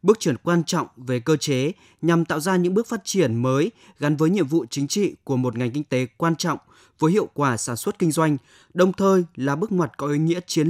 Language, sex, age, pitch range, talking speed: Vietnamese, male, 20-39, 140-180 Hz, 245 wpm